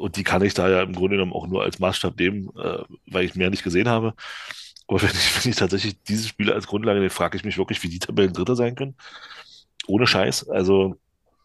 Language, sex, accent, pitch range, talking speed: German, male, German, 95-110 Hz, 235 wpm